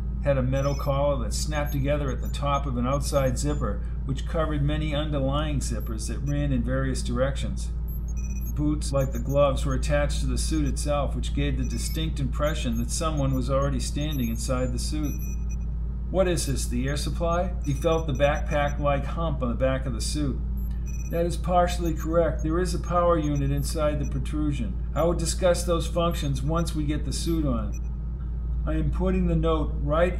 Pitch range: 120-160 Hz